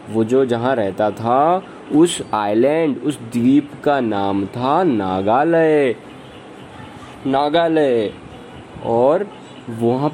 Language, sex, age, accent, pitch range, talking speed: Hindi, male, 20-39, native, 125-165 Hz, 95 wpm